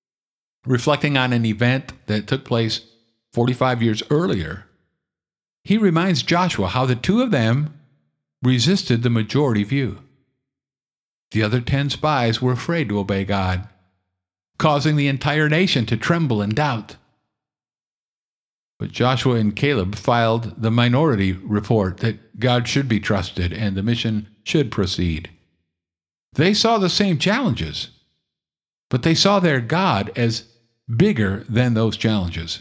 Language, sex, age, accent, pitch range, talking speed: English, male, 50-69, American, 105-150 Hz, 135 wpm